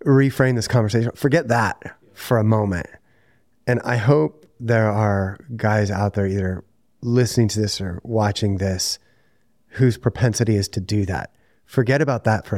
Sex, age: male, 30-49